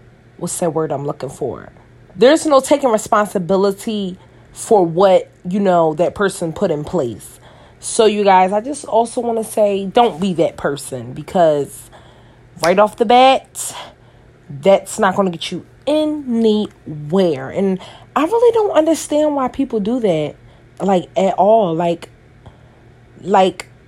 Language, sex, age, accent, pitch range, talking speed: English, female, 30-49, American, 150-220 Hz, 145 wpm